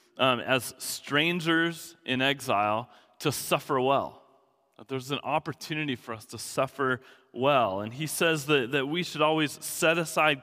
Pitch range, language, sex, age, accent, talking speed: 140-175 Hz, English, male, 30-49, American, 160 wpm